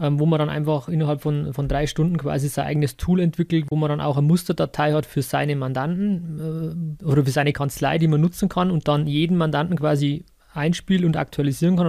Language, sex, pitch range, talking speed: German, male, 145-170 Hz, 210 wpm